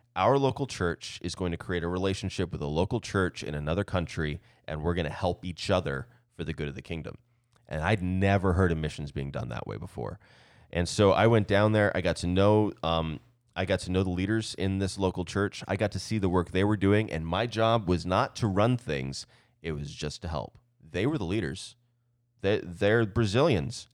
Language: English